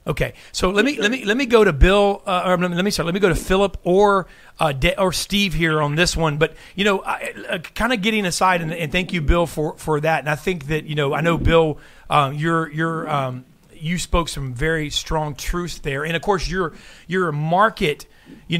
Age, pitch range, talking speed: 40-59, 150-180 Hz, 250 wpm